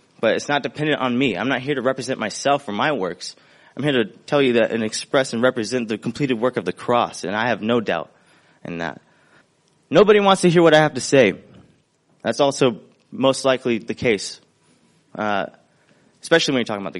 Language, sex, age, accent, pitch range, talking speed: English, male, 20-39, American, 120-185 Hz, 210 wpm